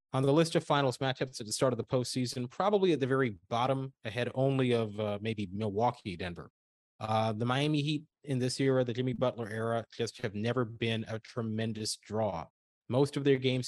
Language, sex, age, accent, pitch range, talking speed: English, male, 30-49, American, 110-140 Hz, 200 wpm